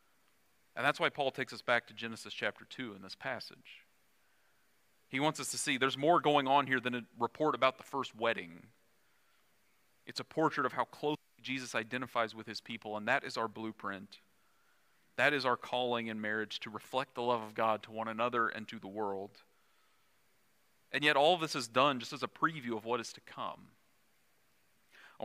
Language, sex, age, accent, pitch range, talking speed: English, male, 40-59, American, 115-140 Hz, 195 wpm